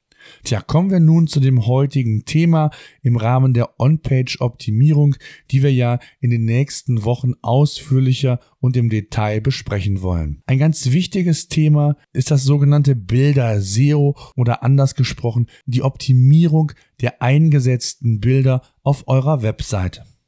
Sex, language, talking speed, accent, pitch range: male, German, 135 wpm, German, 120-145 Hz